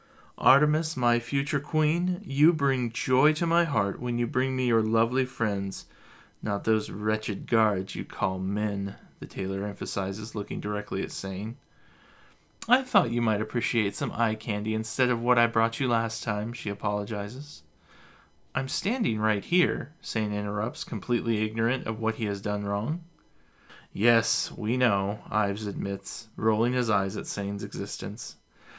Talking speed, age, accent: 155 wpm, 20-39, American